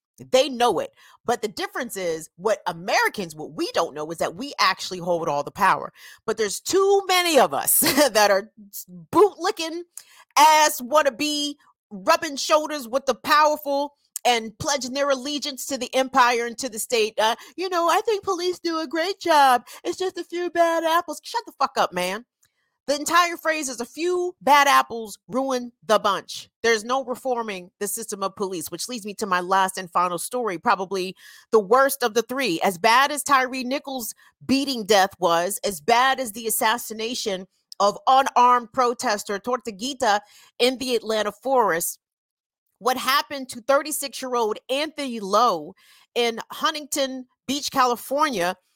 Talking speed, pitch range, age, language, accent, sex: 165 wpm, 210-295 Hz, 40-59, English, American, female